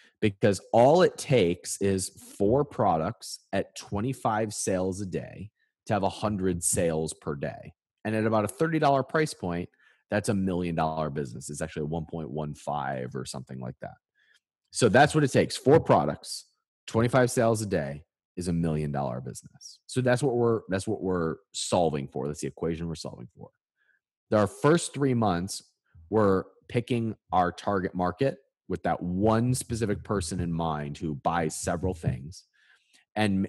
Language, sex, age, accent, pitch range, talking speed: English, male, 30-49, American, 80-110 Hz, 150 wpm